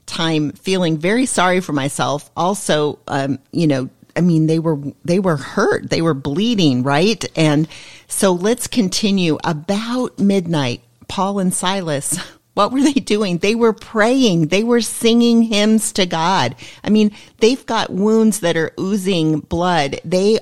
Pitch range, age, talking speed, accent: 155-205 Hz, 40-59, 155 wpm, American